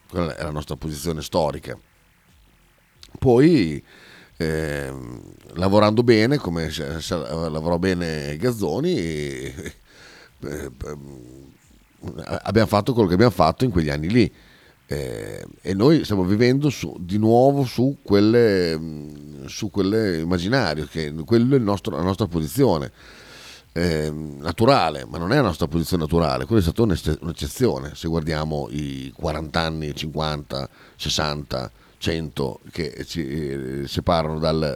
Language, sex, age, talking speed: Italian, male, 40-59, 125 wpm